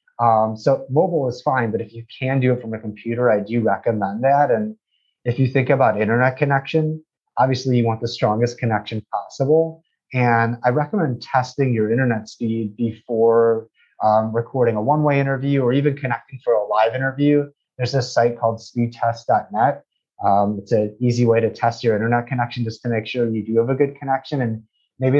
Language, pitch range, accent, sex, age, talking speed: English, 115-140 Hz, American, male, 30-49, 185 wpm